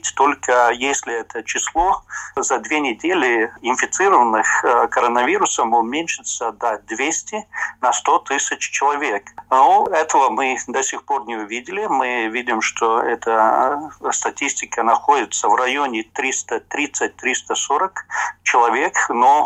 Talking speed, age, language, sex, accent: 105 wpm, 50-69, Russian, male, native